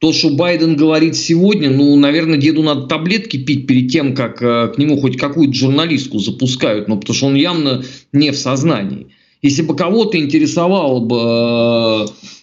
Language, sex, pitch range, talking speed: Russian, male, 130-175 Hz, 165 wpm